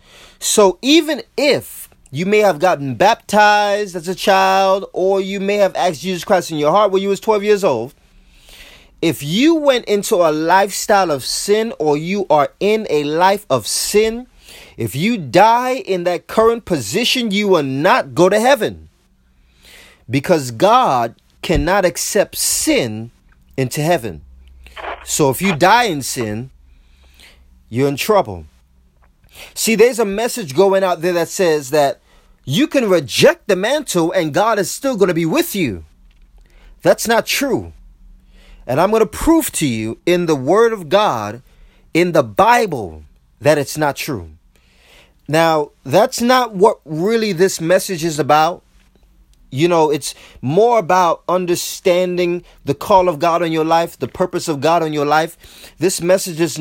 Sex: male